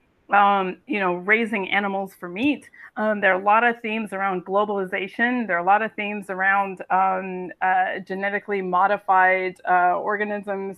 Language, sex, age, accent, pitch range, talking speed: English, female, 30-49, American, 190-215 Hz, 160 wpm